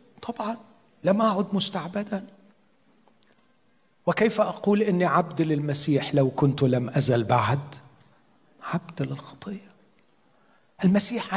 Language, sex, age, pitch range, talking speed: Arabic, male, 40-59, 150-230 Hz, 90 wpm